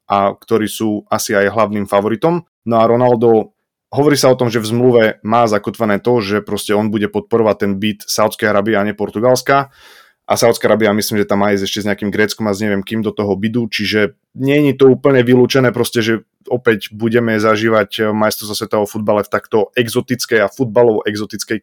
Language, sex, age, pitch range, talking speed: Slovak, male, 20-39, 105-125 Hz, 195 wpm